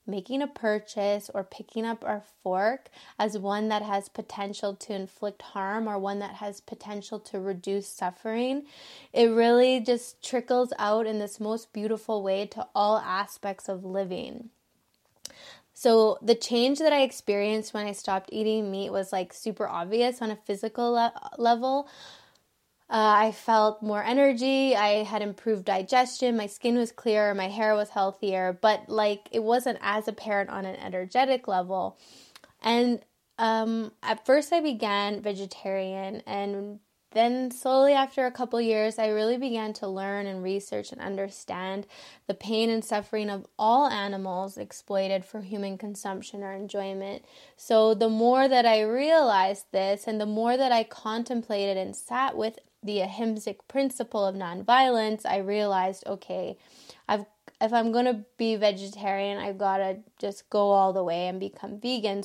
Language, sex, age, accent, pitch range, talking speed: English, female, 10-29, American, 200-235 Hz, 155 wpm